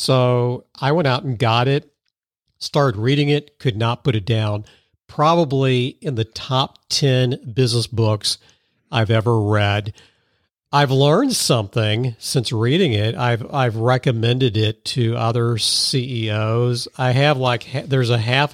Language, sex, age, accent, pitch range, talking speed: English, male, 50-69, American, 115-130 Hz, 140 wpm